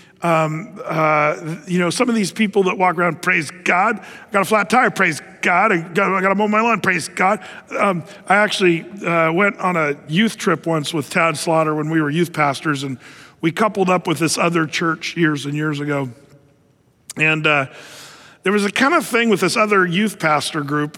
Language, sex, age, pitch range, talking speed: English, male, 50-69, 155-200 Hz, 210 wpm